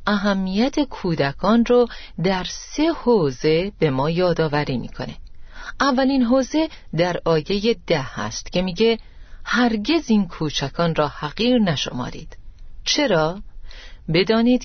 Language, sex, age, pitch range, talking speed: Persian, female, 40-59, 155-235 Hz, 105 wpm